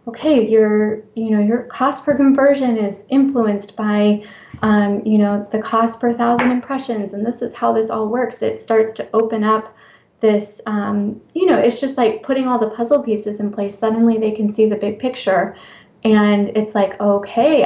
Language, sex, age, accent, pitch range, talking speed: English, female, 20-39, American, 210-230 Hz, 190 wpm